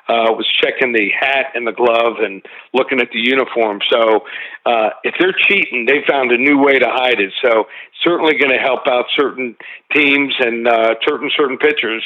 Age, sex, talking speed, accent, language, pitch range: 50-69, male, 195 wpm, American, English, 120-150 Hz